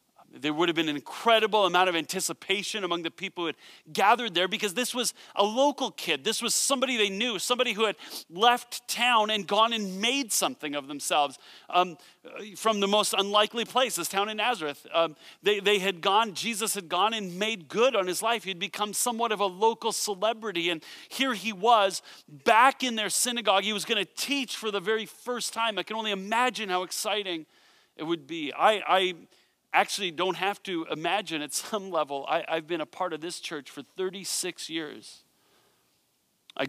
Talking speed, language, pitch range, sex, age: 195 wpm, English, 175-225 Hz, male, 40-59